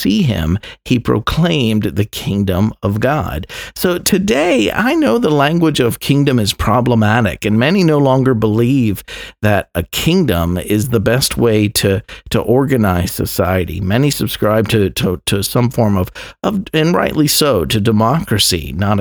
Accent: American